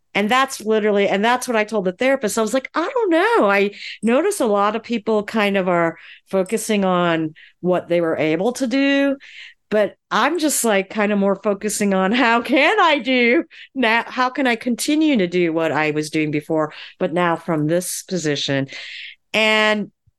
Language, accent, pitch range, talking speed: English, American, 165-230 Hz, 190 wpm